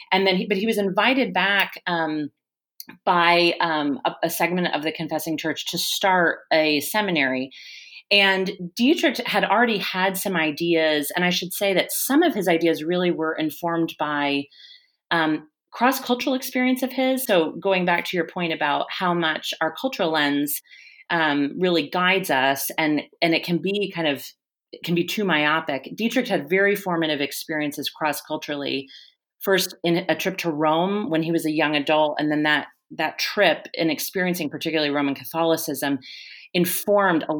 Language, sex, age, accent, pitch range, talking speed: English, female, 30-49, American, 155-190 Hz, 165 wpm